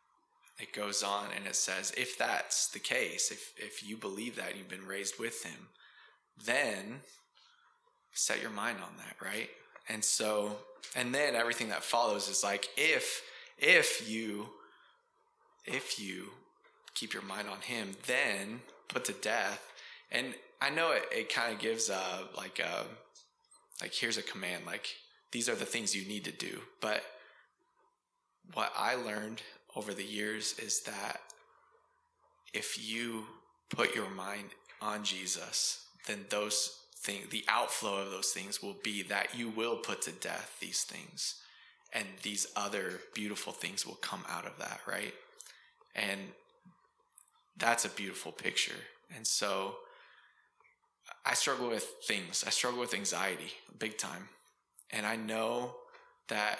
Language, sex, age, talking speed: English, male, 20-39, 150 wpm